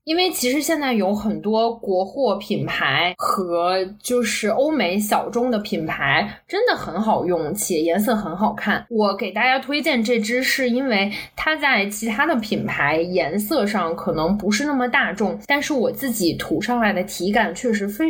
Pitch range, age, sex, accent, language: 200-255 Hz, 20-39, female, native, Chinese